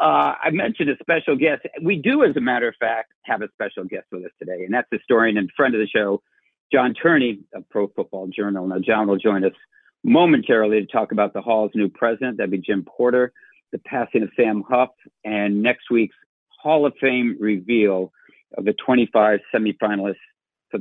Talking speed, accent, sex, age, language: 200 wpm, American, male, 50-69, English